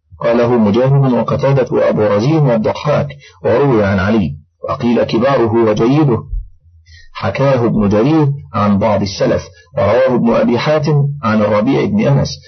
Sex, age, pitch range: male, 40-59, 100-140 Hz